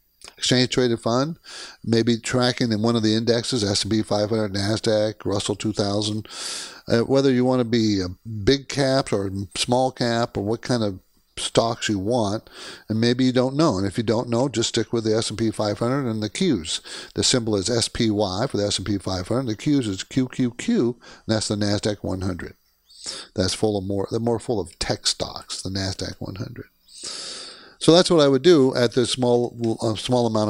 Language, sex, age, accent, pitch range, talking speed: English, male, 50-69, American, 105-135 Hz, 185 wpm